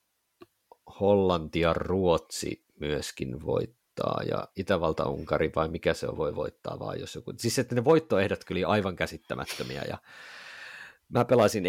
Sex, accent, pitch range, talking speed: male, native, 85-115 Hz, 135 wpm